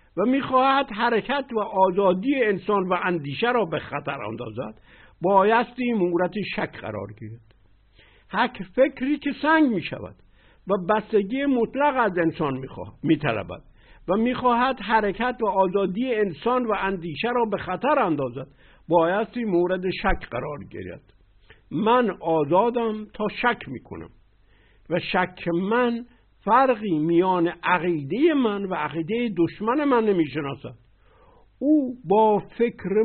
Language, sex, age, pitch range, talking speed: Persian, male, 60-79, 155-235 Hz, 125 wpm